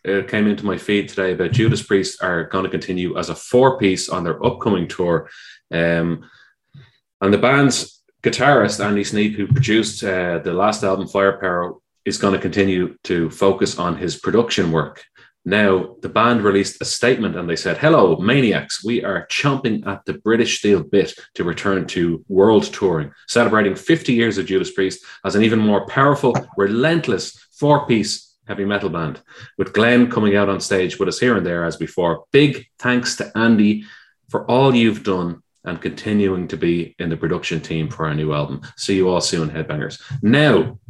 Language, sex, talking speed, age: English, male, 180 wpm, 30-49